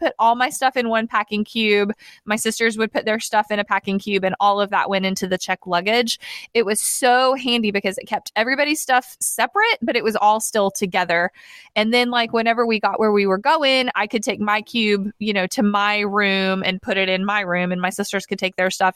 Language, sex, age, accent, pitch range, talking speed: English, female, 20-39, American, 190-235 Hz, 240 wpm